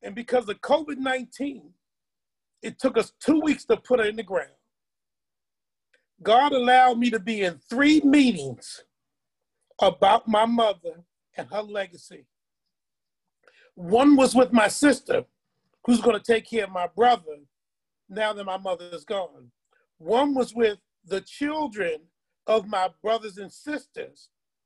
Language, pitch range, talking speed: English, 195-270 Hz, 140 wpm